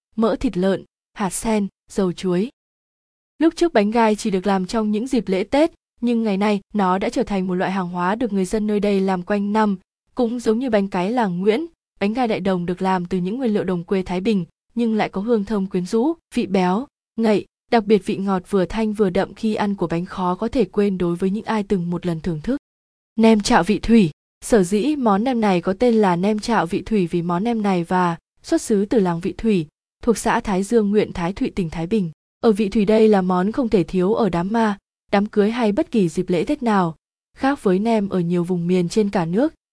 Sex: female